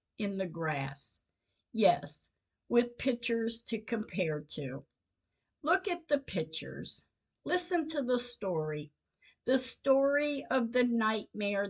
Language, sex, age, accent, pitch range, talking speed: English, female, 50-69, American, 195-270 Hz, 115 wpm